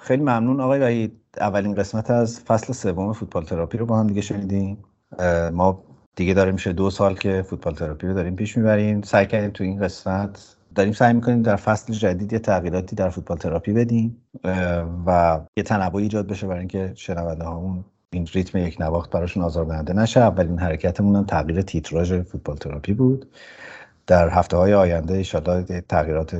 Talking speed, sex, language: 170 wpm, male, Persian